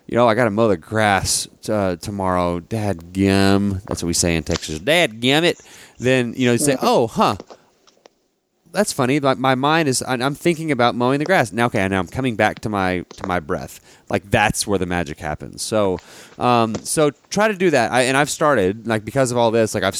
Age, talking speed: 30-49, 220 wpm